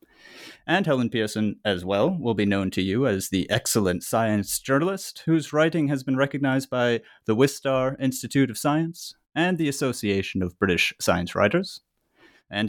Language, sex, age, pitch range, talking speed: English, male, 30-49, 115-155 Hz, 160 wpm